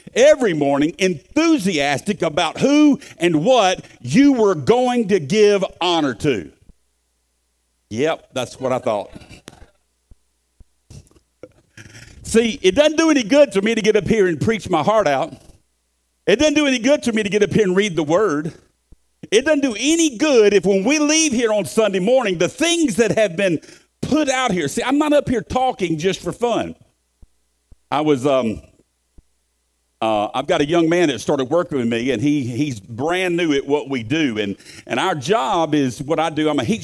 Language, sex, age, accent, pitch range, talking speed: English, male, 50-69, American, 130-215 Hz, 185 wpm